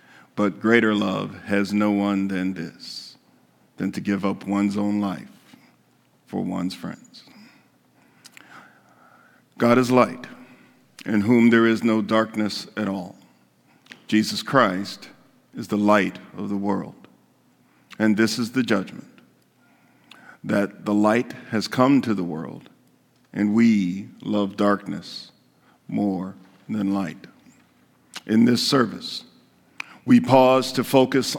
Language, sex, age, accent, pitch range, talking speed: English, male, 50-69, American, 100-115 Hz, 120 wpm